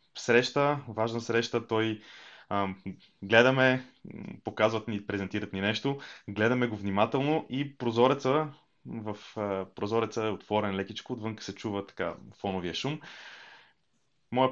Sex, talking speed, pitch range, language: male, 120 wpm, 105-130 Hz, Bulgarian